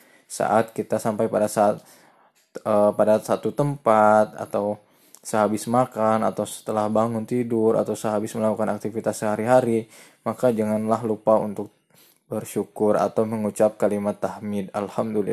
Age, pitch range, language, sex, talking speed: 10-29, 110-125 Hz, Indonesian, male, 115 wpm